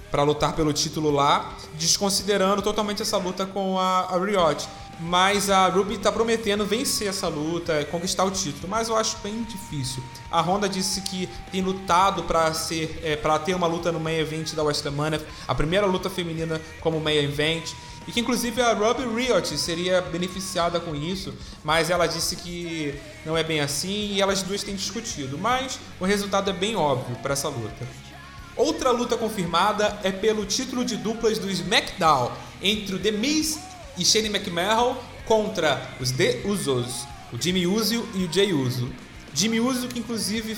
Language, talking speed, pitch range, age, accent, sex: Portuguese, 170 wpm, 150-205 Hz, 20-39, Brazilian, male